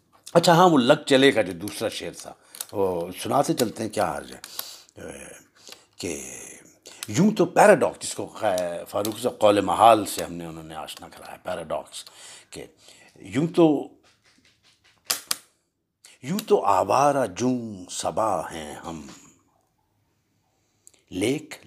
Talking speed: 125 wpm